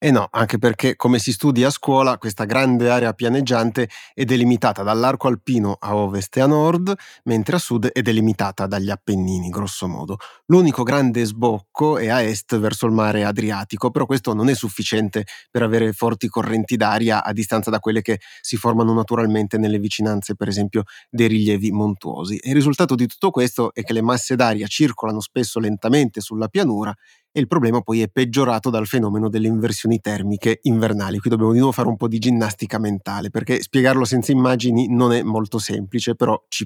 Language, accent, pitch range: Italian, native, 110-125 Hz